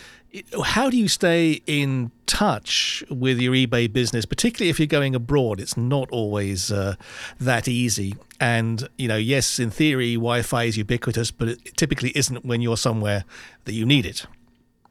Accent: British